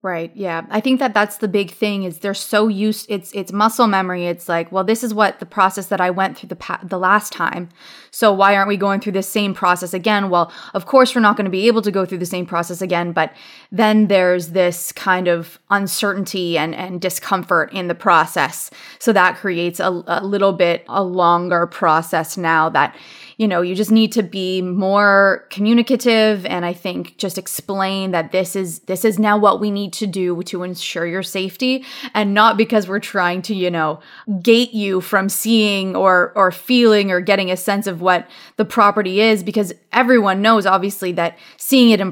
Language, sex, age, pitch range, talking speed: English, female, 20-39, 180-210 Hz, 210 wpm